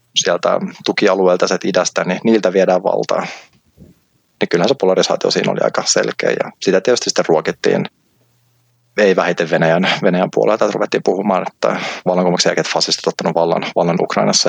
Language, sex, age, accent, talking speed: Finnish, male, 30-49, native, 155 wpm